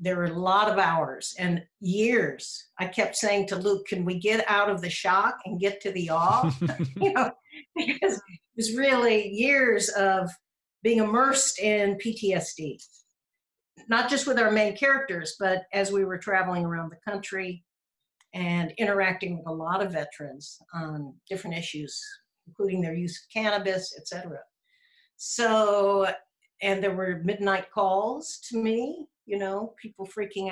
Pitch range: 175-225 Hz